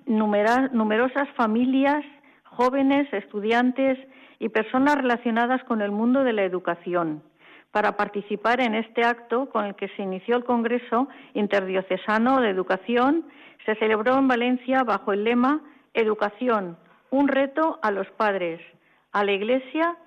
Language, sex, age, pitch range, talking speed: Spanish, female, 50-69, 195-255 Hz, 130 wpm